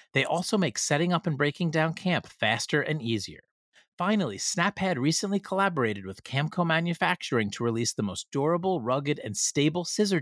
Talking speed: 165 wpm